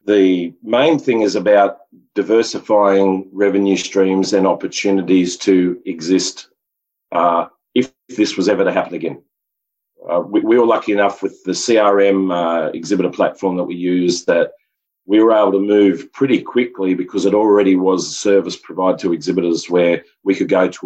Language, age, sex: English, 40-59, male